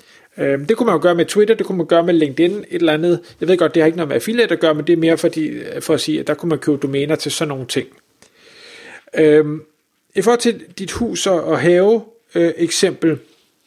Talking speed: 230 wpm